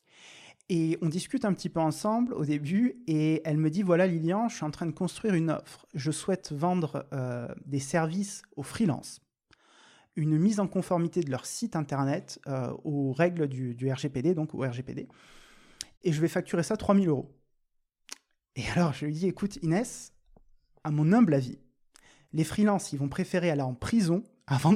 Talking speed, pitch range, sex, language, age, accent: 180 wpm, 150-200 Hz, male, French, 20-39, French